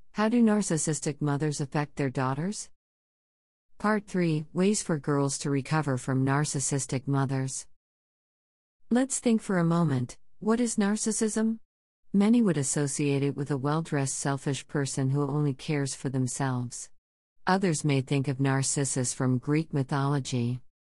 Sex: female